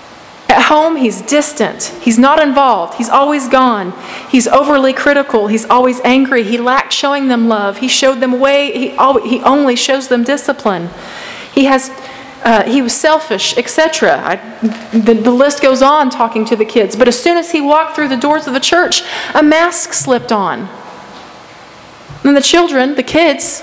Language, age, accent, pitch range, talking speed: English, 30-49, American, 230-280 Hz, 170 wpm